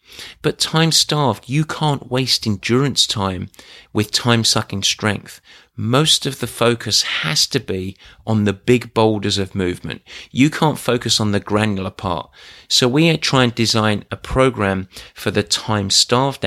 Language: English